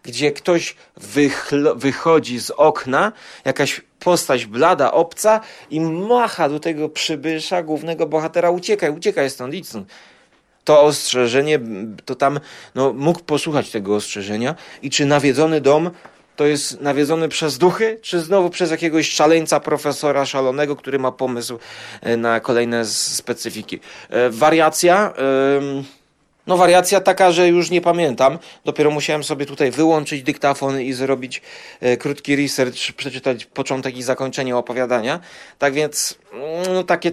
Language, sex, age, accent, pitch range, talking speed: Polish, male, 30-49, native, 135-175 Hz, 125 wpm